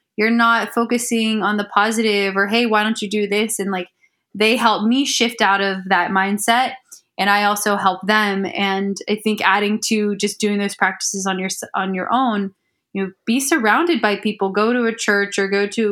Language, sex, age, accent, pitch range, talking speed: English, female, 20-39, American, 195-225 Hz, 205 wpm